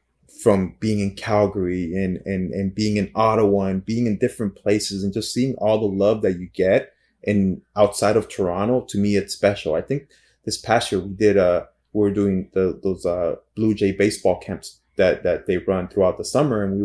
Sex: male